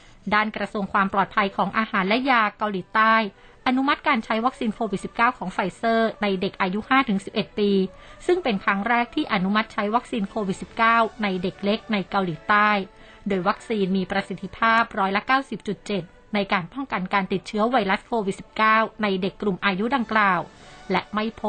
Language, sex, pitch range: Thai, female, 195-230 Hz